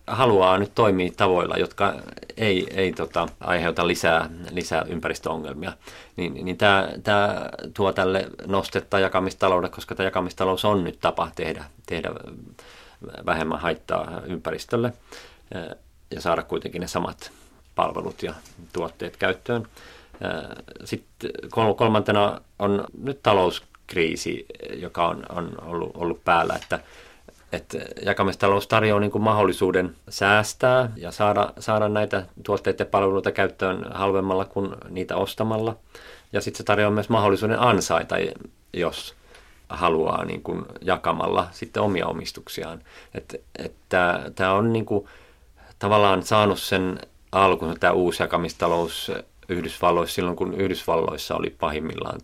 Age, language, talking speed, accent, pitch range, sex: 40-59, Finnish, 115 wpm, native, 90-105 Hz, male